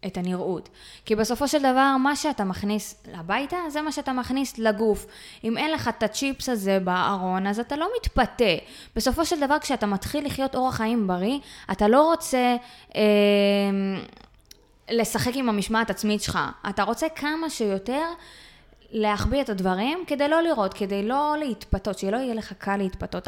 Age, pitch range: 20-39, 200-260 Hz